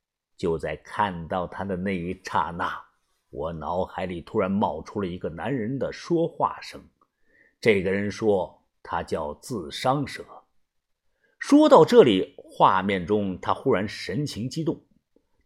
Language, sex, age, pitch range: Chinese, male, 50-69, 95-140 Hz